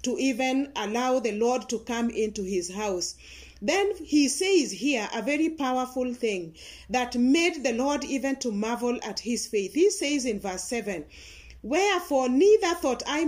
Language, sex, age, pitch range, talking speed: English, female, 40-59, 235-310 Hz, 165 wpm